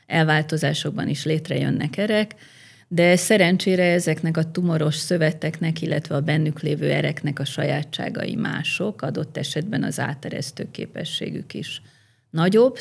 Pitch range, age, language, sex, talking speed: 155-185 Hz, 30-49, Hungarian, female, 115 wpm